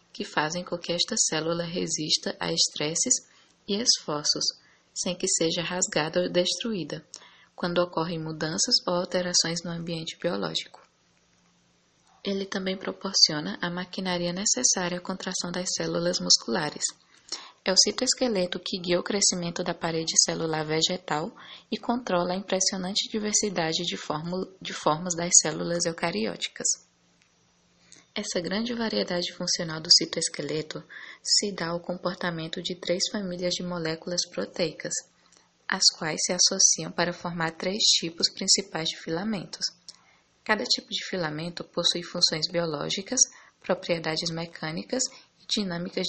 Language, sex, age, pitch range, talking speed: English, female, 10-29, 170-200 Hz, 125 wpm